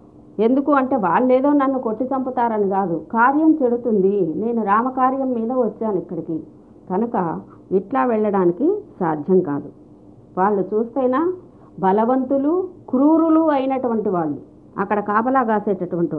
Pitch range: 195-260 Hz